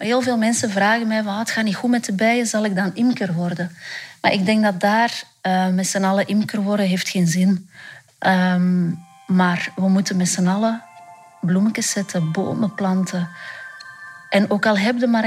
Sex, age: female, 30-49